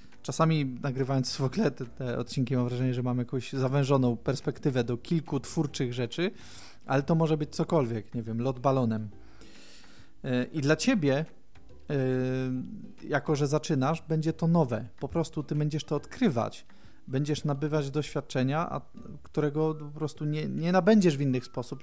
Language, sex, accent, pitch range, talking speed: Polish, male, native, 130-160 Hz, 145 wpm